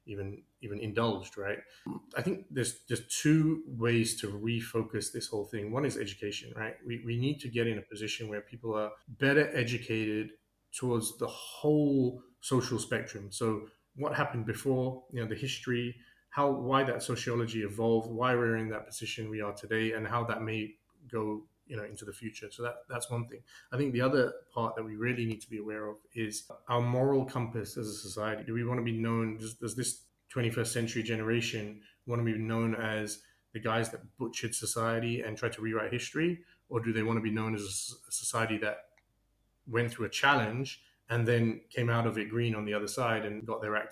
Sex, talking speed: male, 205 wpm